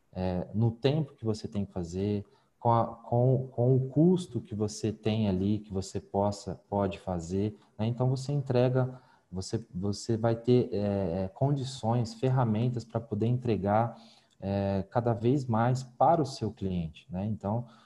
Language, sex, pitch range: Portuguese, male, 100-125 Hz